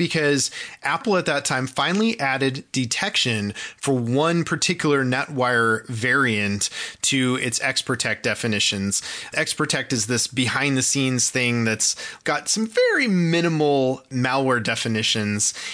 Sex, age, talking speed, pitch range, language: male, 20-39, 110 wpm, 120-155 Hz, English